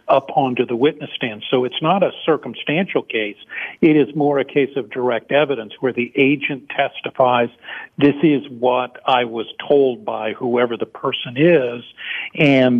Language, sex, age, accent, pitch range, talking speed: English, male, 50-69, American, 125-150 Hz, 165 wpm